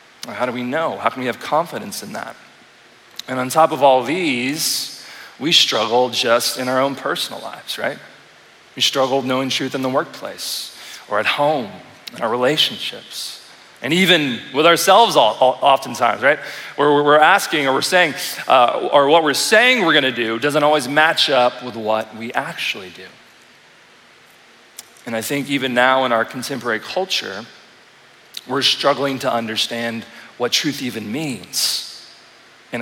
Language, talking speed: English, 155 wpm